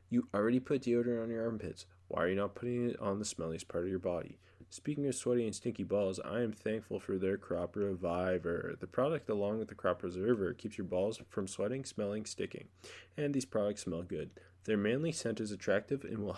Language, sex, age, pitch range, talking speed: English, male, 20-39, 95-120 Hz, 215 wpm